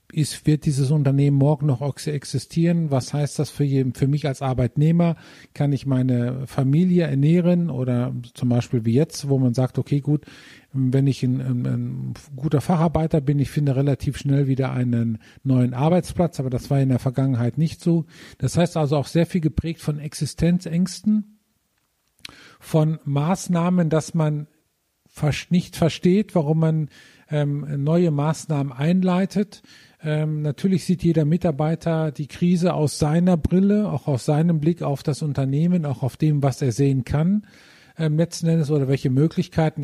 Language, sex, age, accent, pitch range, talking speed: German, male, 50-69, German, 135-165 Hz, 155 wpm